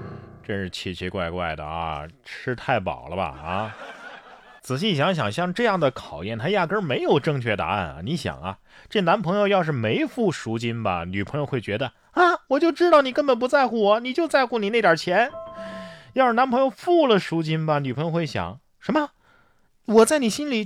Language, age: Chinese, 30-49